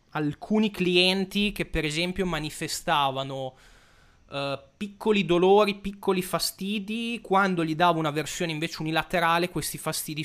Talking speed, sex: 110 wpm, male